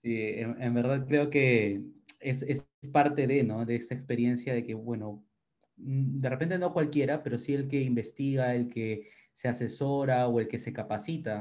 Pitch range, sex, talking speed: 115-135 Hz, male, 185 wpm